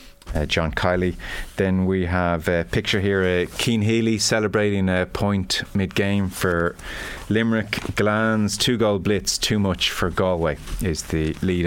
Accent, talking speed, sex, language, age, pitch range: Irish, 160 wpm, male, English, 30-49, 85-100 Hz